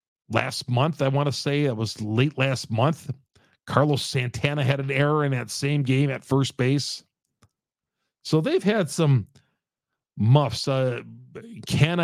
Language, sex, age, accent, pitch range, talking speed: English, male, 50-69, American, 125-160 Hz, 145 wpm